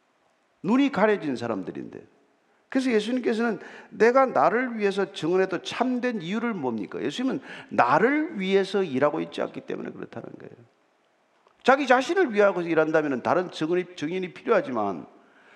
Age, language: 50-69, Korean